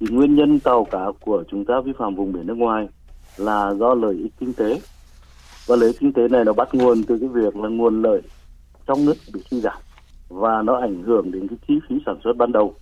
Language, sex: Vietnamese, male